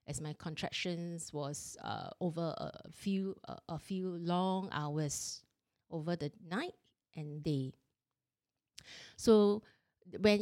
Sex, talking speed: female, 115 wpm